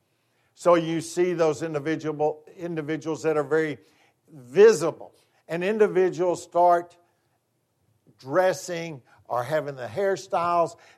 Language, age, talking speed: English, 60-79, 95 wpm